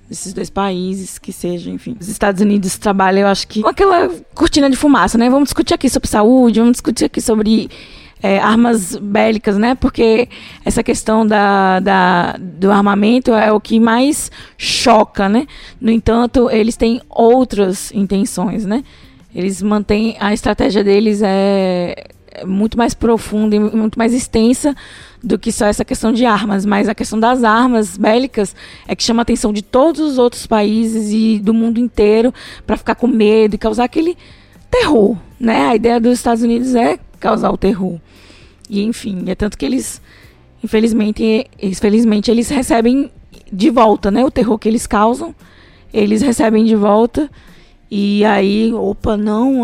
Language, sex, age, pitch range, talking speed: Portuguese, female, 20-39, 200-235 Hz, 160 wpm